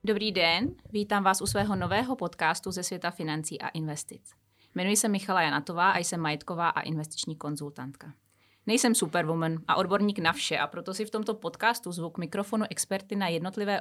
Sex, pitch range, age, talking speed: female, 155-195 Hz, 30-49, 175 wpm